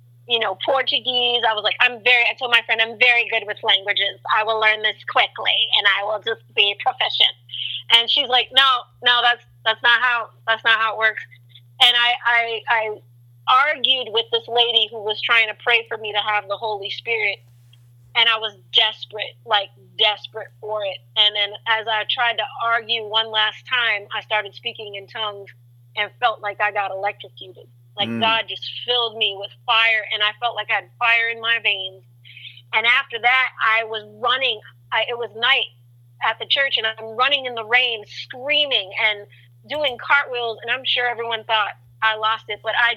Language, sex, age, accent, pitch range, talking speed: English, female, 30-49, American, 200-235 Hz, 195 wpm